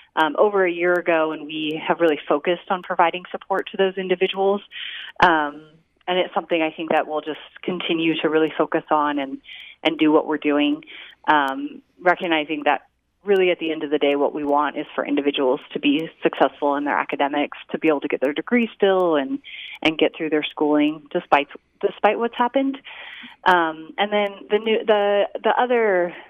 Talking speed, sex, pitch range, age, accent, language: 190 wpm, female, 155-185 Hz, 30-49, American, English